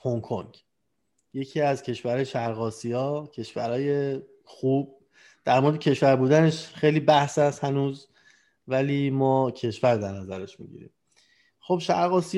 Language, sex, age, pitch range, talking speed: Persian, male, 30-49, 115-145 Hz, 125 wpm